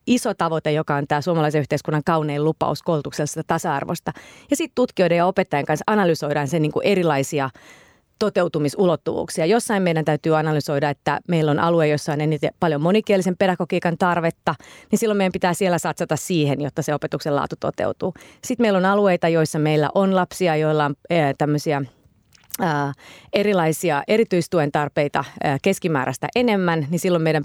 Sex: female